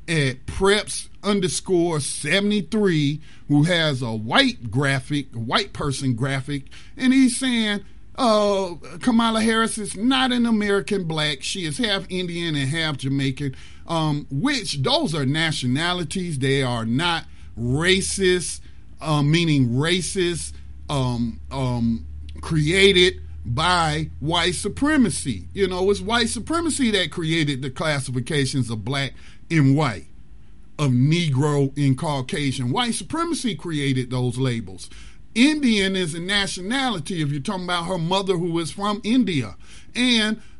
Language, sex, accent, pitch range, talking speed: English, male, American, 135-200 Hz, 125 wpm